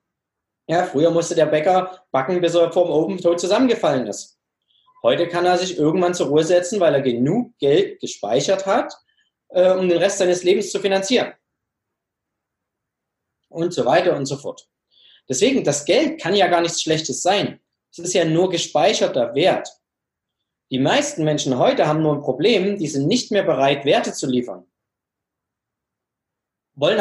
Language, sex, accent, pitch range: German, male, German, 150-200 Hz